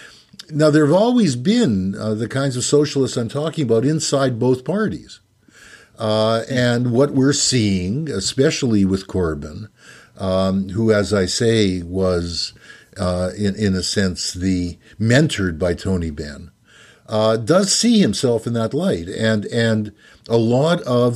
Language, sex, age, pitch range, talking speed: English, male, 50-69, 95-145 Hz, 145 wpm